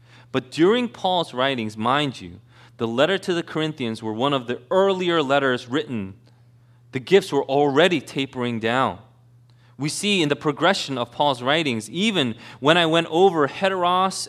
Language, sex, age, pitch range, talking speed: English, male, 30-49, 120-175 Hz, 160 wpm